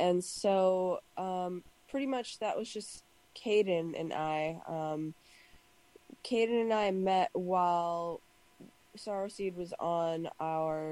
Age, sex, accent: 20-39, female, American